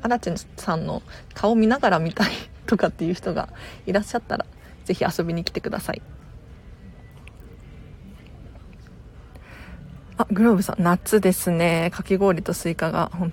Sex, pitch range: female, 185-245 Hz